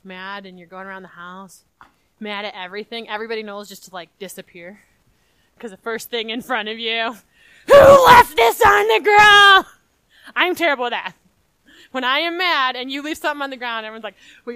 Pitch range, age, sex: 220-320 Hz, 20-39, female